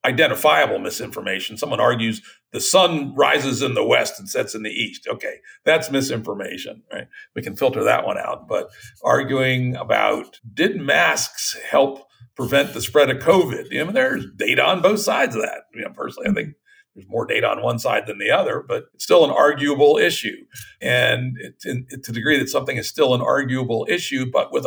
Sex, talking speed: male, 200 wpm